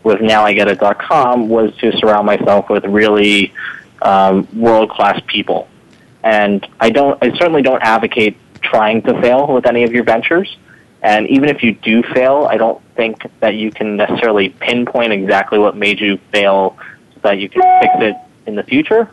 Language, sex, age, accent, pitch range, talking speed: English, male, 20-39, American, 100-115 Hz, 180 wpm